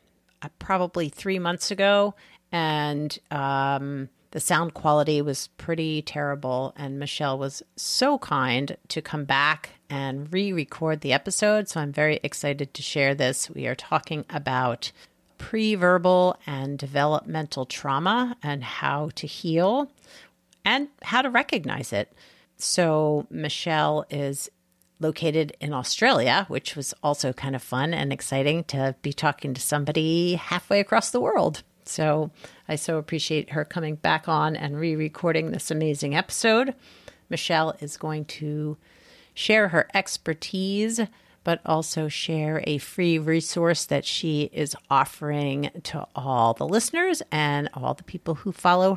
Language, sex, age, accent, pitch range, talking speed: English, female, 40-59, American, 145-185 Hz, 135 wpm